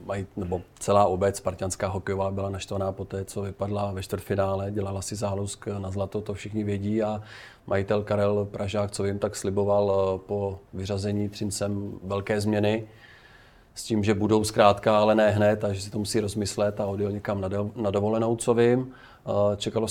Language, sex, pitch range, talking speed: Czech, male, 100-110 Hz, 170 wpm